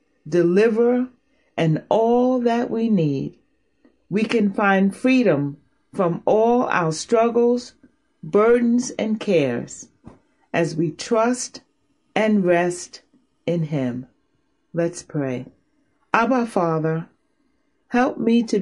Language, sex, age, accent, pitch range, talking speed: English, female, 40-59, American, 170-230 Hz, 100 wpm